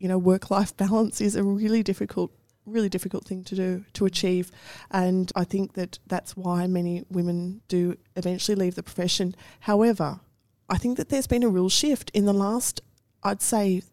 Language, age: English, 20-39